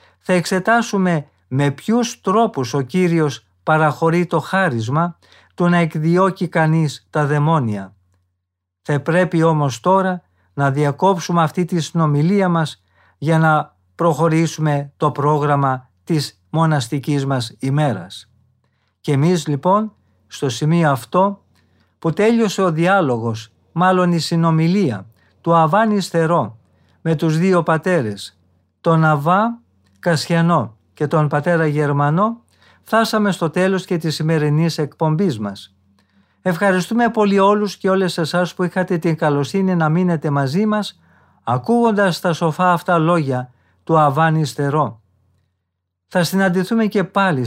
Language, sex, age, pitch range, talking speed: Greek, male, 50-69, 140-180 Hz, 120 wpm